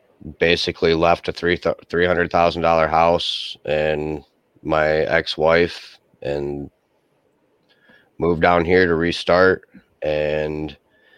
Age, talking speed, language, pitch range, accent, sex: 30-49, 80 wpm, English, 80-85 Hz, American, male